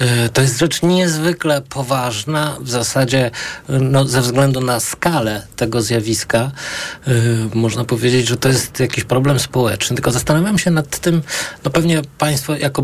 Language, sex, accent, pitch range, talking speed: Polish, male, native, 115-145 Hz, 140 wpm